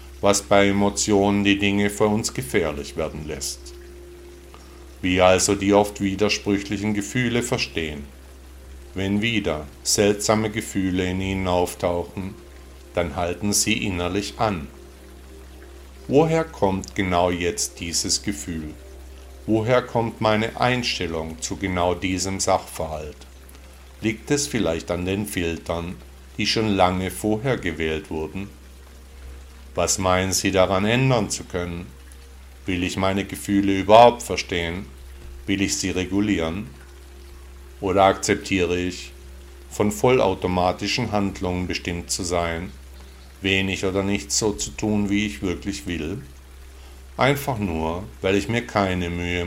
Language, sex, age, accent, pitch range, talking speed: German, male, 50-69, German, 70-100 Hz, 120 wpm